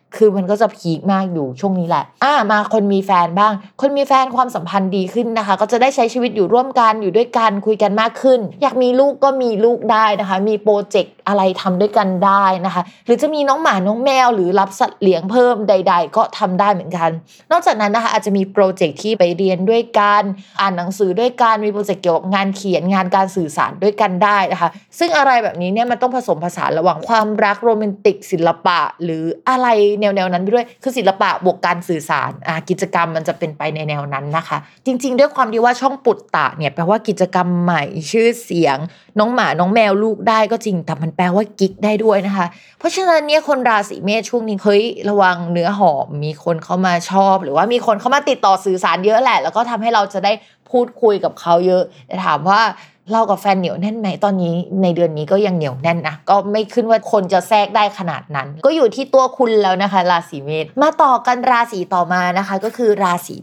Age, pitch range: 20-39, 180-230 Hz